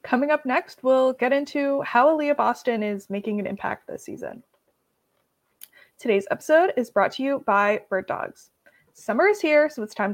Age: 20-39